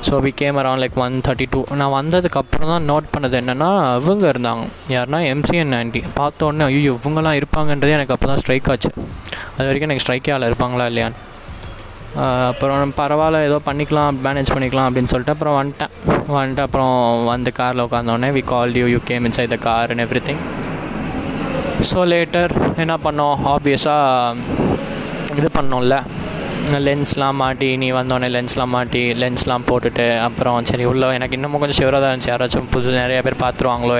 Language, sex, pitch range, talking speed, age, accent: Tamil, male, 125-145 Hz, 155 wpm, 20-39, native